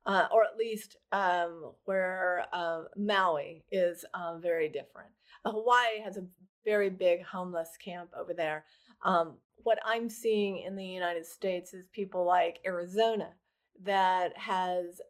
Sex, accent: female, American